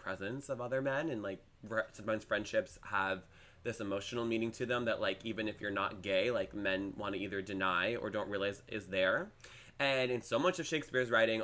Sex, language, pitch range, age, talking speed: male, English, 105-130 Hz, 20-39, 205 wpm